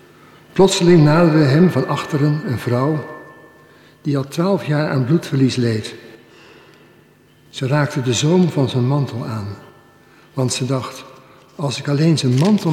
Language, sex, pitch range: Dutch, male, 130-150 Hz